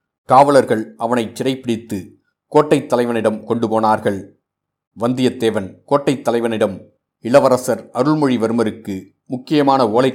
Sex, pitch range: male, 110-130 Hz